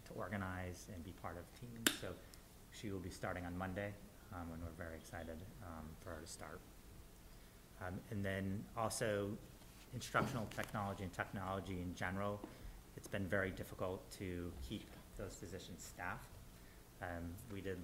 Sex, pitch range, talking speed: male, 85-100 Hz, 150 wpm